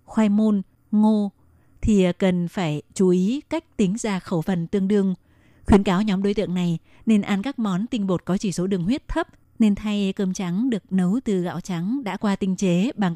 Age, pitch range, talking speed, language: 20-39, 180-215 Hz, 215 wpm, Vietnamese